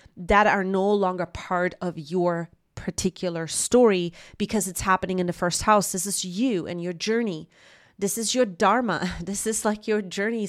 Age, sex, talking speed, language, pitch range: 30-49, female, 175 wpm, English, 180-220 Hz